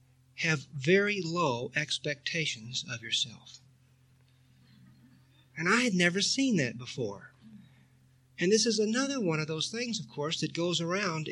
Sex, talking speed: male, 140 wpm